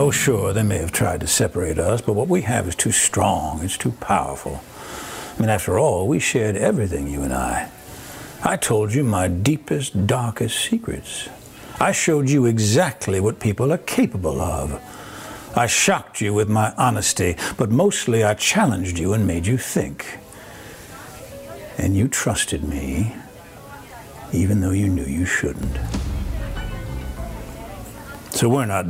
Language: Dutch